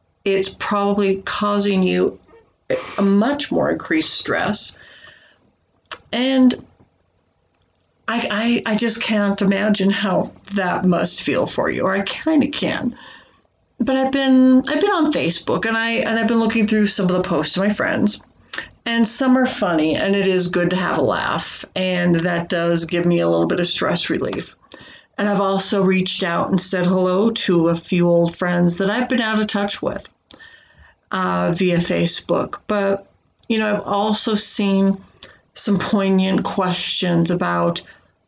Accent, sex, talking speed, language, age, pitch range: American, female, 165 wpm, English, 50-69, 175-210 Hz